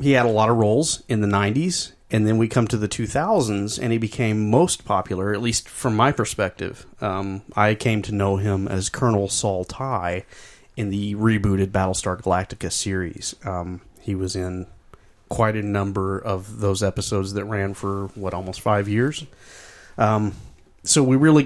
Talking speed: 180 wpm